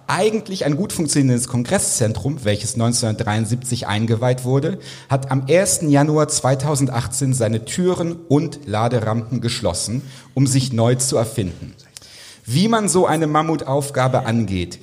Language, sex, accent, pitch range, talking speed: German, male, German, 120-150 Hz, 120 wpm